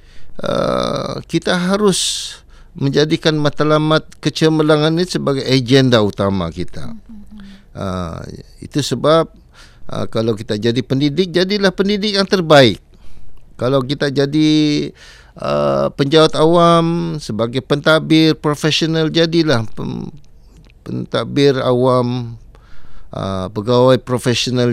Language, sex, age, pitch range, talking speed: Malay, male, 50-69, 105-150 Hz, 95 wpm